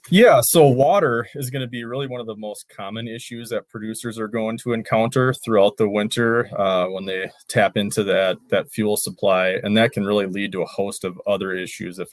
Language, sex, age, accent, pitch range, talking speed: English, male, 30-49, American, 95-115 Hz, 220 wpm